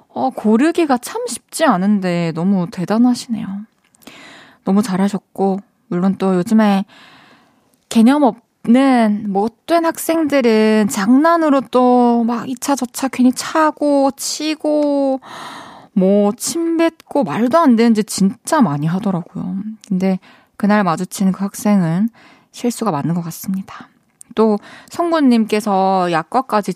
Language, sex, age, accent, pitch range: Korean, female, 20-39, native, 190-255 Hz